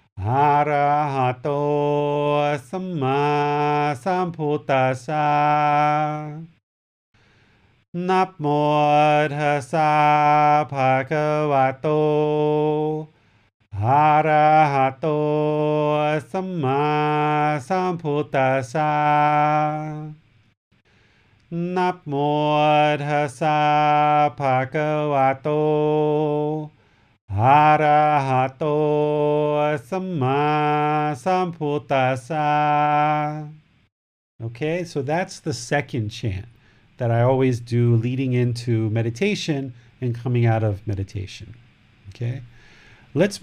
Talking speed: 45 wpm